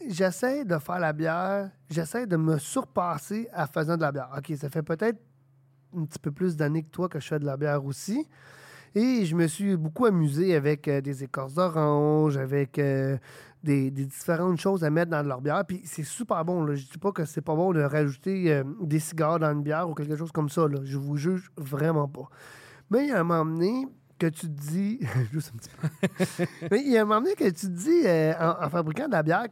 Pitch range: 145-190 Hz